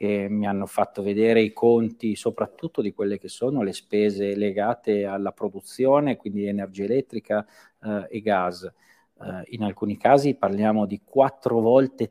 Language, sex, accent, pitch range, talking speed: Italian, male, native, 105-120 Hz, 155 wpm